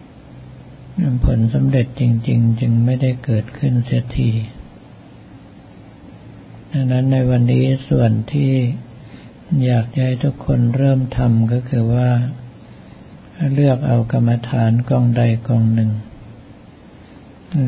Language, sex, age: Thai, male, 50-69